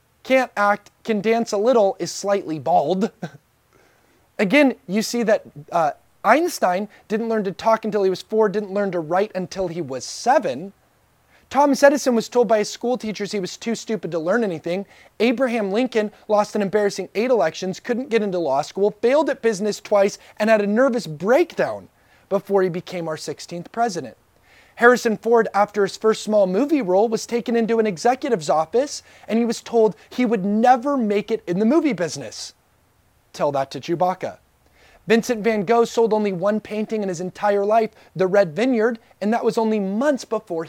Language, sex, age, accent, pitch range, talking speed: English, male, 30-49, American, 185-230 Hz, 185 wpm